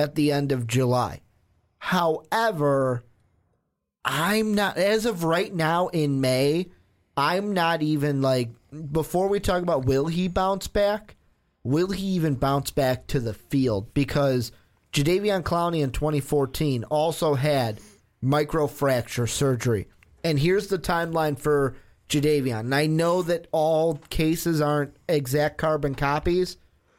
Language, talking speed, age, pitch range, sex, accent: English, 130 wpm, 30-49, 130-170 Hz, male, American